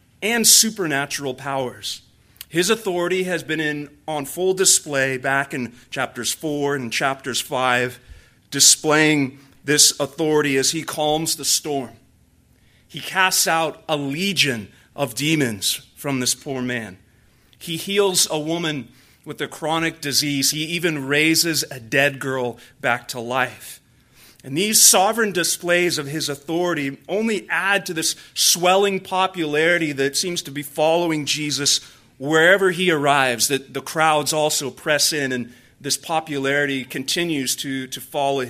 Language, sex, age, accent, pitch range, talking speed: English, male, 30-49, American, 135-170 Hz, 140 wpm